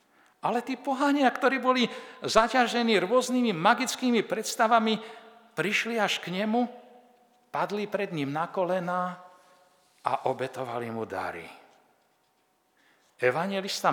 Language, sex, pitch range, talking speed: Slovak, male, 185-250 Hz, 100 wpm